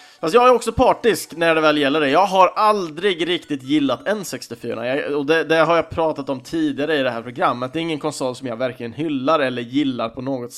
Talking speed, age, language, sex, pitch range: 225 wpm, 30-49, Swedish, male, 130-180 Hz